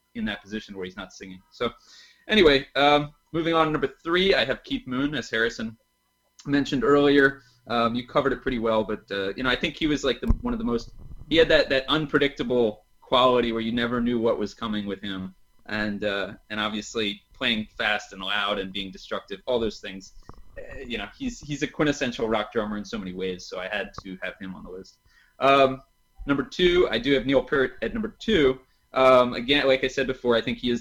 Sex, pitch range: male, 105-135 Hz